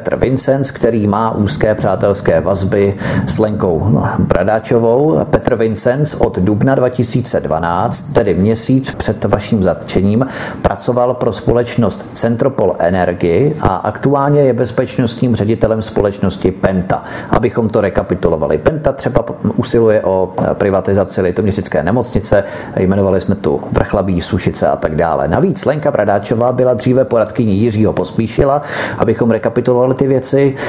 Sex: male